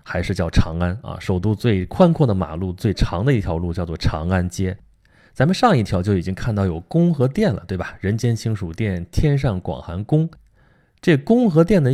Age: 20-39